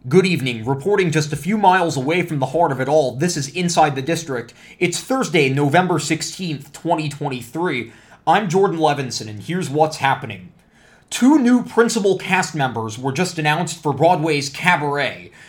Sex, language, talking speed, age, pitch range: male, English, 165 wpm, 20-39, 140-175 Hz